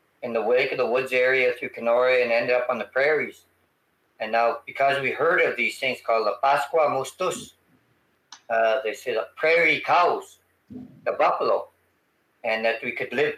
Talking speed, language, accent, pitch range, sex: 180 wpm, English, American, 115-155 Hz, male